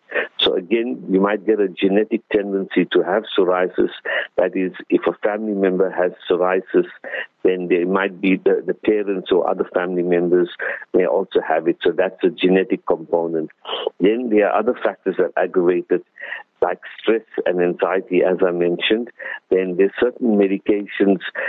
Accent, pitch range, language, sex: Indian, 90-110 Hz, English, male